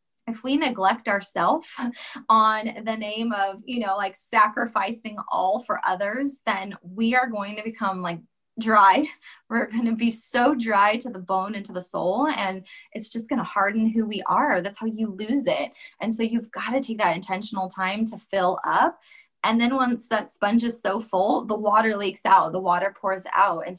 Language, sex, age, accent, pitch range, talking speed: English, female, 20-39, American, 190-245 Hz, 200 wpm